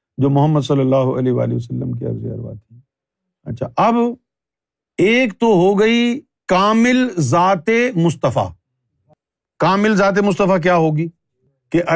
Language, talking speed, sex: Urdu, 130 wpm, male